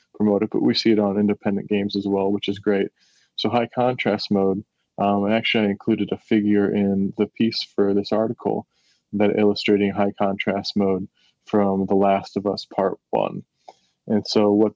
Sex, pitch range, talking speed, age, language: male, 100-110 Hz, 185 wpm, 20-39, English